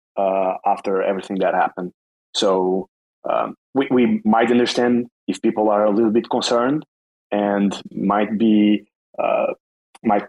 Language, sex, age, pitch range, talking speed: English, male, 20-39, 95-120 Hz, 135 wpm